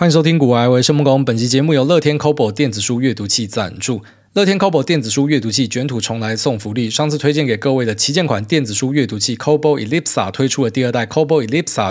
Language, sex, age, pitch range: Chinese, male, 20-39, 120-155 Hz